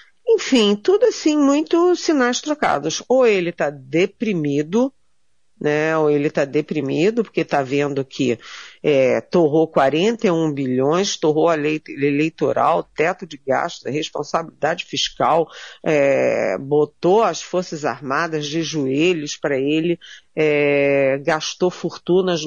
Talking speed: 110 wpm